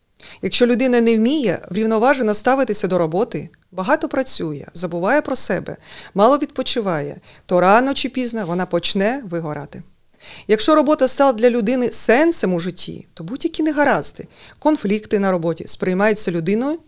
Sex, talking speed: female, 135 wpm